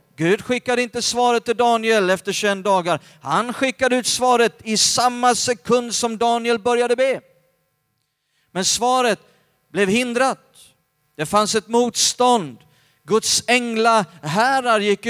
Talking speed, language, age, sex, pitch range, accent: 125 wpm, Swedish, 40-59, male, 150-230 Hz, native